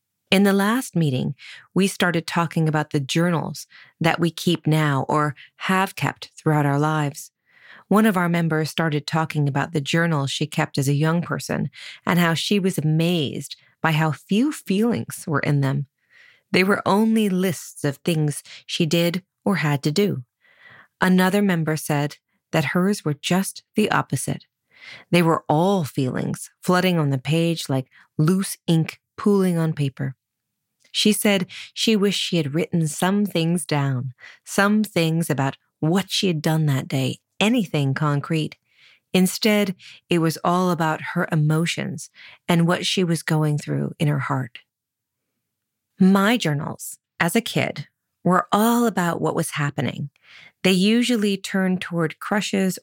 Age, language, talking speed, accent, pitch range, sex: 30-49, English, 155 wpm, American, 145-190 Hz, female